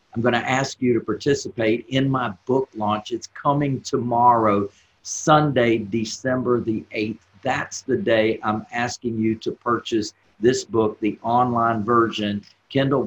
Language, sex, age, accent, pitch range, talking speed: English, male, 50-69, American, 105-135 Hz, 140 wpm